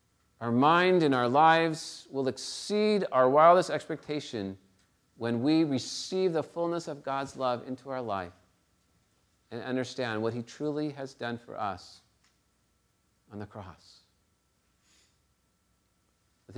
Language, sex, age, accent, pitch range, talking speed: English, male, 40-59, American, 95-135 Hz, 125 wpm